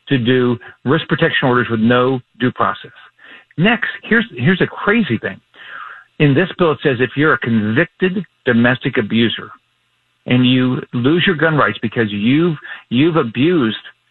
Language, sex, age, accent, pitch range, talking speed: English, male, 50-69, American, 120-150 Hz, 155 wpm